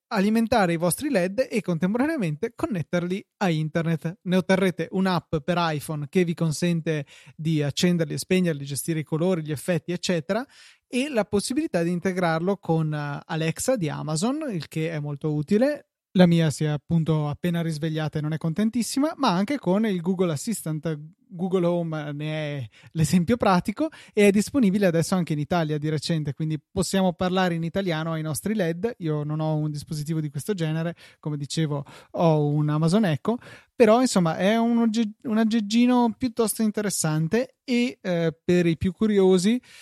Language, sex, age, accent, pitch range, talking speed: Italian, male, 20-39, native, 155-200 Hz, 165 wpm